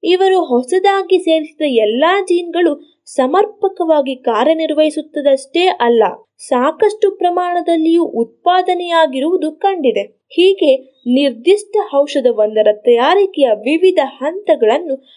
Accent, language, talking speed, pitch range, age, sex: native, Kannada, 70 wpm, 255-360 Hz, 20-39, female